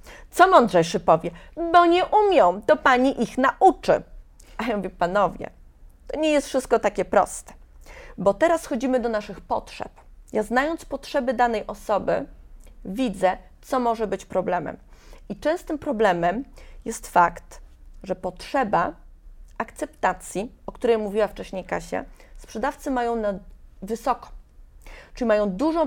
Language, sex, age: Polish, female, 30-49